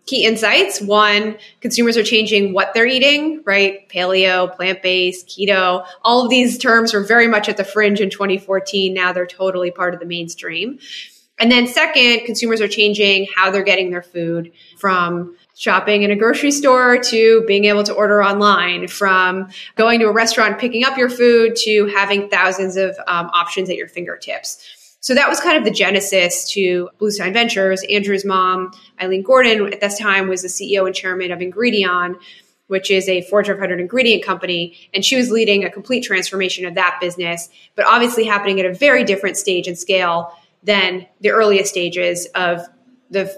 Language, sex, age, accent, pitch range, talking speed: English, female, 20-39, American, 180-220 Hz, 180 wpm